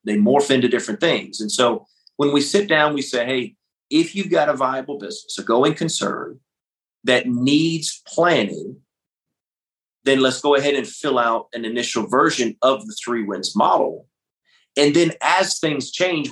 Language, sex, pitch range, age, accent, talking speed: English, male, 115-140 Hz, 30-49, American, 170 wpm